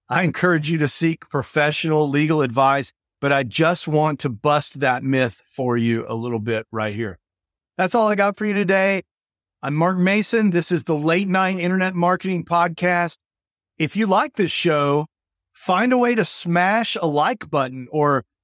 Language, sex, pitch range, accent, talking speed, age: English, male, 135-185 Hz, American, 180 wpm, 40-59